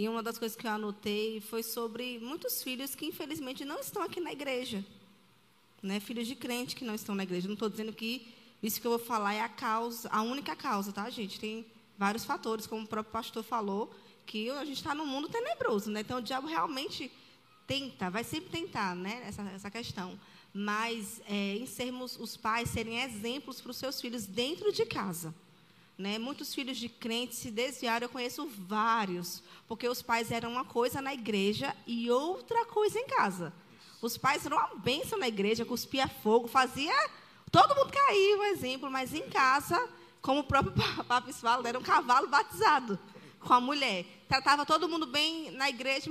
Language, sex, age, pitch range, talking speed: Portuguese, female, 10-29, 215-275 Hz, 190 wpm